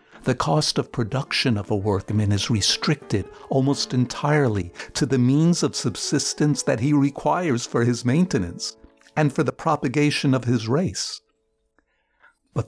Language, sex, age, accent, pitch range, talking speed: English, male, 60-79, American, 115-145 Hz, 140 wpm